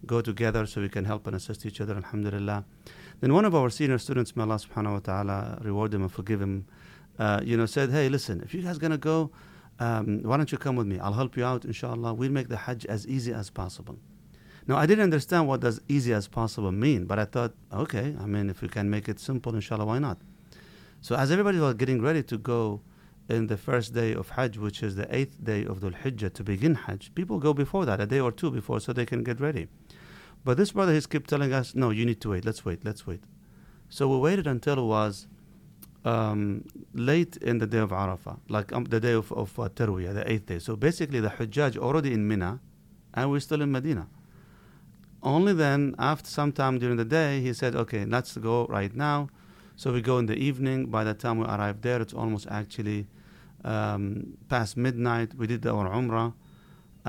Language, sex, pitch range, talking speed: English, male, 105-135 Hz, 220 wpm